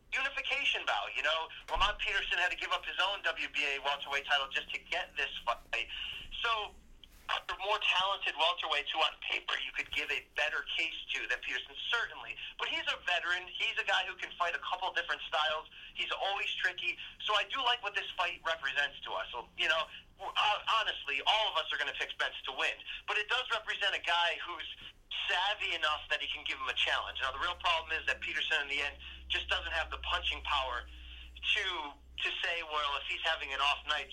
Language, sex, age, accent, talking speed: English, male, 30-49, American, 215 wpm